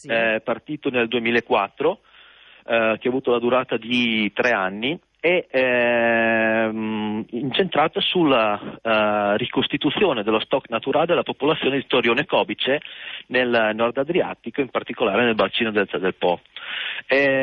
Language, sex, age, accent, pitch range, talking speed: Italian, male, 40-59, native, 110-155 Hz, 130 wpm